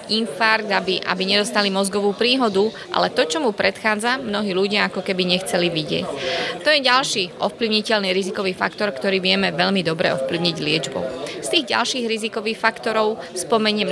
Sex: female